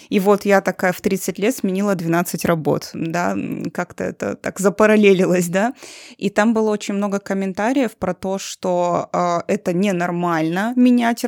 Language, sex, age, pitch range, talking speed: Russian, female, 20-39, 185-225 Hz, 155 wpm